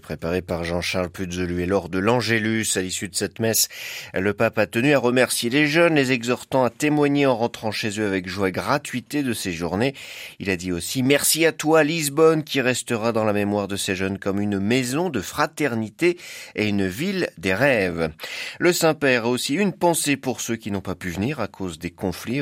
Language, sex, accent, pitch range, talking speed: French, male, French, 95-140 Hz, 210 wpm